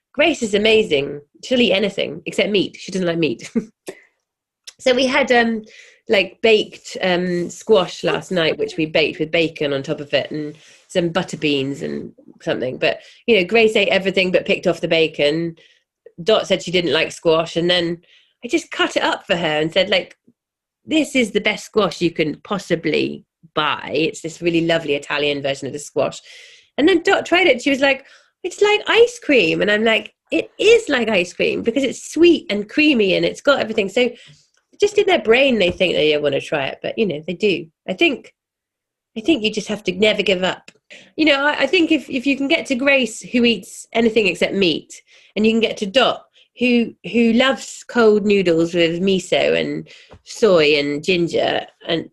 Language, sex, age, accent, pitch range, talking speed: English, female, 30-49, British, 170-270 Hz, 205 wpm